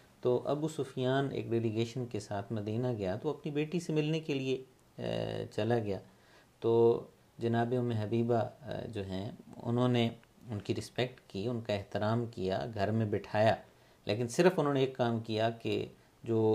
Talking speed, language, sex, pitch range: 165 wpm, Urdu, male, 105-120 Hz